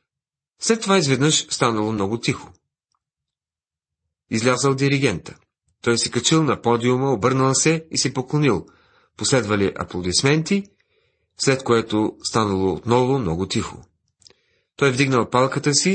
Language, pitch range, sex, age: Bulgarian, 105-150 Hz, male, 40-59